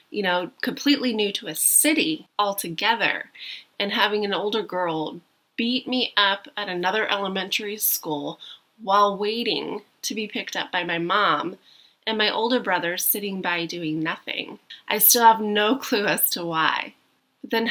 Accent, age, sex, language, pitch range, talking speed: American, 20-39, female, English, 175-225 Hz, 155 wpm